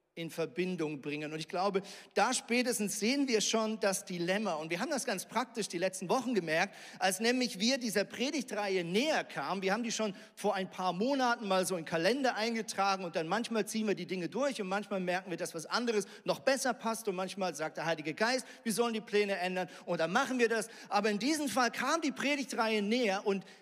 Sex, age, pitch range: male, 40-59, 170-230 Hz